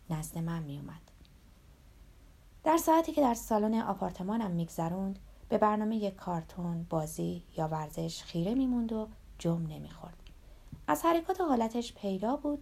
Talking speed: 140 wpm